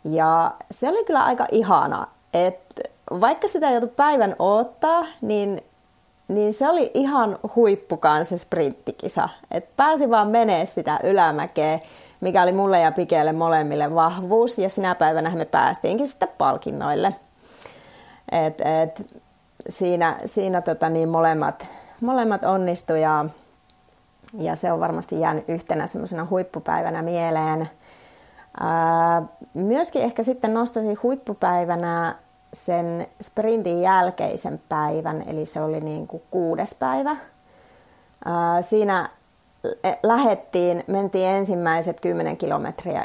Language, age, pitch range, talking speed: Finnish, 30-49, 165-225 Hz, 115 wpm